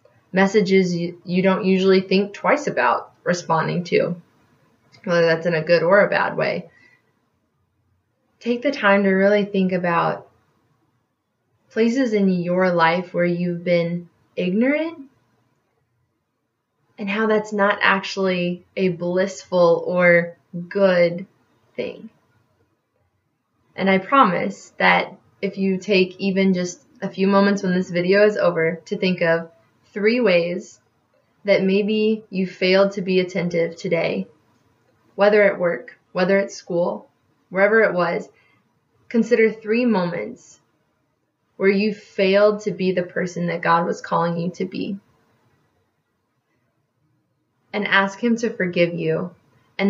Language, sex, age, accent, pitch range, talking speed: English, female, 20-39, American, 175-200 Hz, 130 wpm